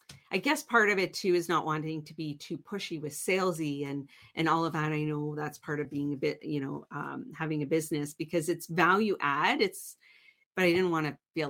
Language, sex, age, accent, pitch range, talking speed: English, female, 40-59, American, 150-195 Hz, 235 wpm